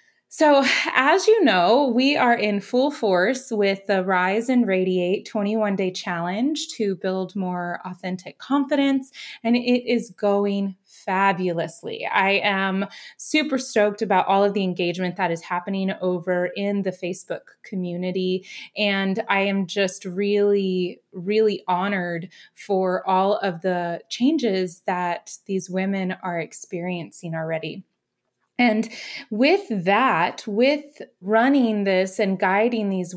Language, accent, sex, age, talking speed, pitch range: English, American, female, 20-39, 130 wpm, 185-225 Hz